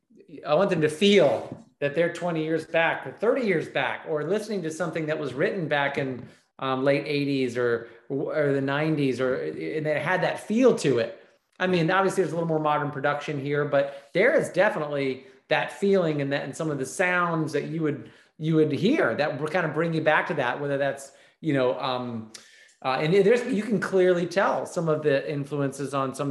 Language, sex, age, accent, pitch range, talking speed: English, male, 30-49, American, 135-170 Hz, 215 wpm